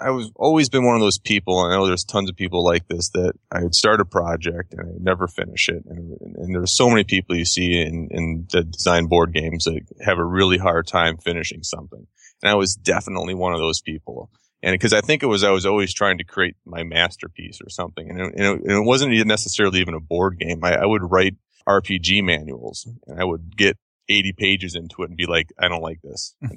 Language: English